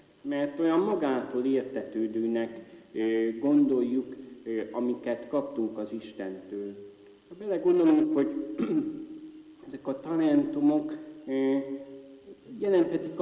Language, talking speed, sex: Hungarian, 75 wpm, male